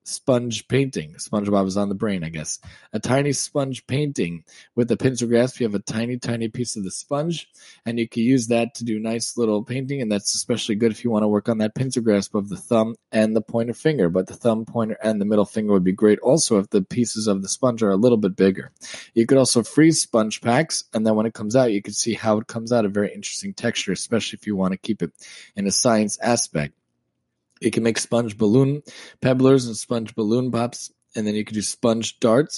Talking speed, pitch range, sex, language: 240 wpm, 105-120 Hz, male, English